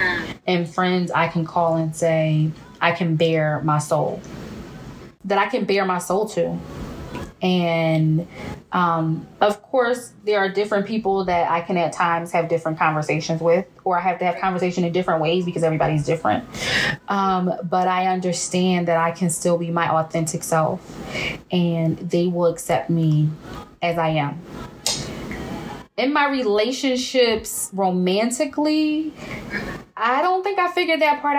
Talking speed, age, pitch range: 150 wpm, 20-39, 170-210 Hz